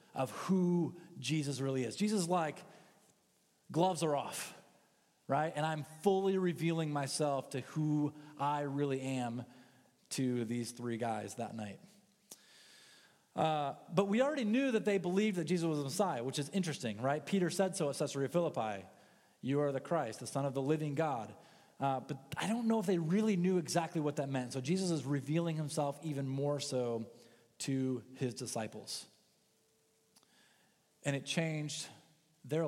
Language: English